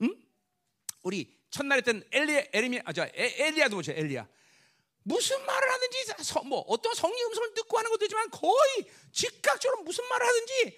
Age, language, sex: 40-59, Korean, male